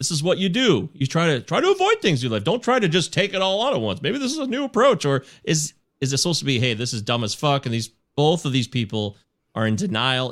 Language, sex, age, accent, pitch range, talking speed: English, male, 30-49, American, 125-195 Hz, 310 wpm